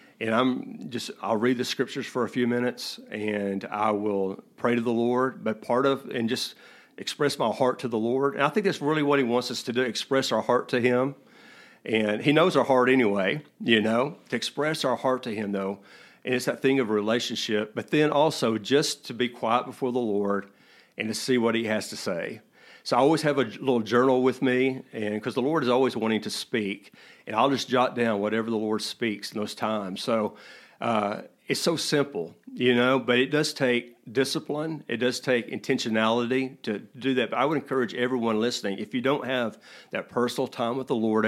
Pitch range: 110-130 Hz